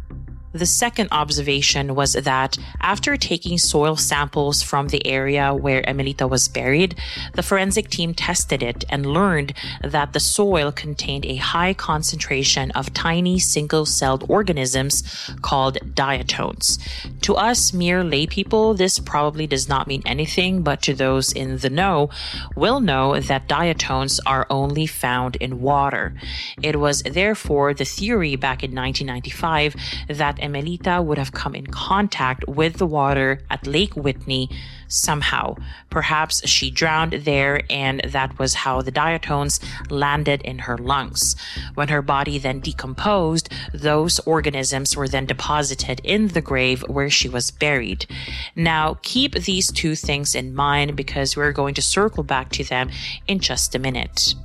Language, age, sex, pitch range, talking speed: English, 30-49, female, 130-155 Hz, 145 wpm